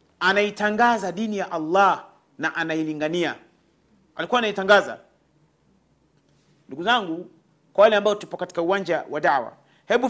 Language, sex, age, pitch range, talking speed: Swahili, male, 40-59, 180-235 Hz, 105 wpm